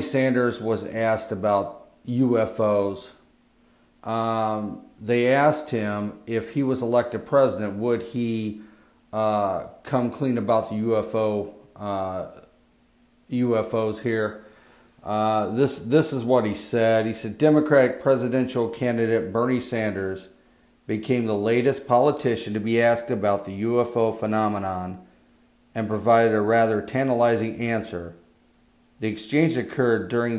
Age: 40-59